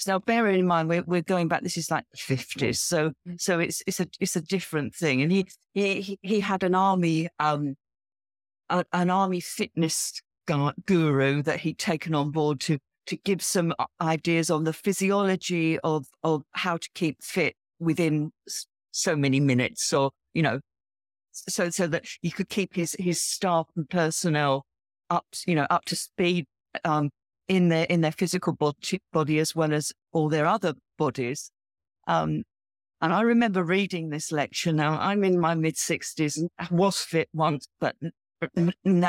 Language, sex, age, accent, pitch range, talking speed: English, female, 50-69, British, 150-185 Hz, 165 wpm